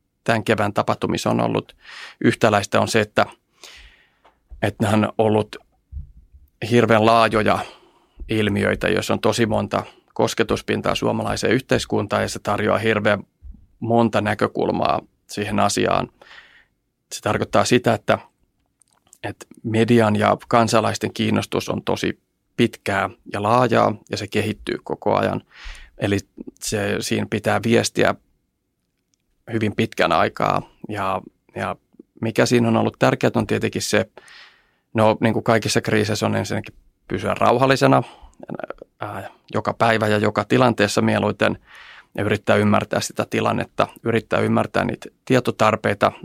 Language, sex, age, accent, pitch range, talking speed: Finnish, male, 30-49, native, 105-115 Hz, 120 wpm